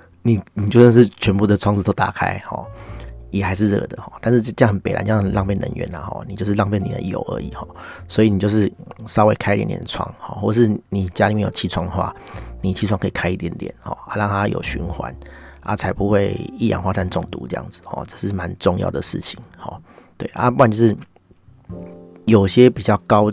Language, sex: Chinese, male